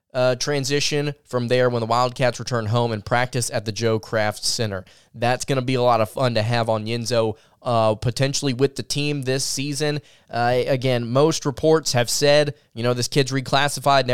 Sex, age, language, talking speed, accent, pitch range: male, 20-39, English, 200 wpm, American, 120-145 Hz